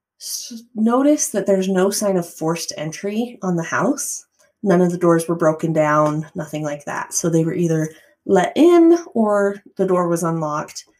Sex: female